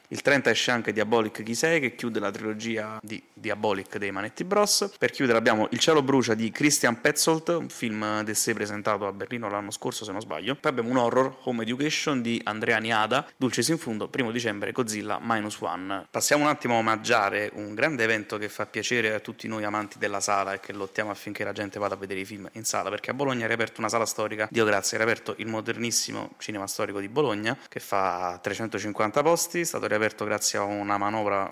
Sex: male